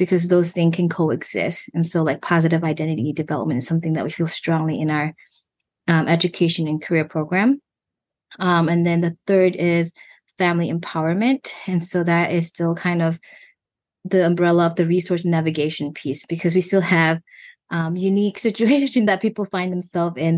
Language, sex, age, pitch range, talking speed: English, female, 20-39, 165-185 Hz, 170 wpm